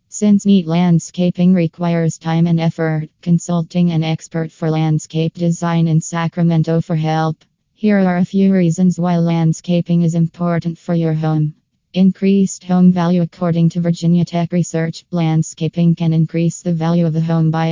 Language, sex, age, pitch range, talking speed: English, female, 20-39, 165-180 Hz, 155 wpm